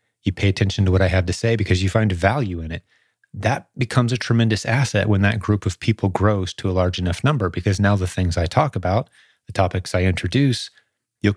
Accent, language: American, English